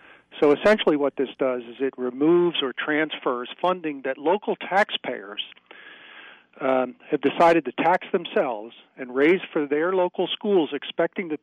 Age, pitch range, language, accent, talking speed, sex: 50-69, 125-150 Hz, English, American, 145 wpm, male